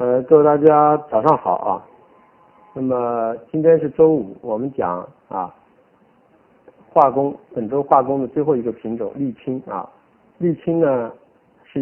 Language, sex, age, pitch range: Chinese, male, 50-69, 110-145 Hz